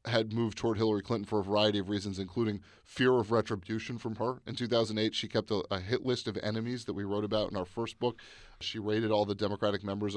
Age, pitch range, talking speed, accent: 30-49, 100-110 Hz, 235 wpm, American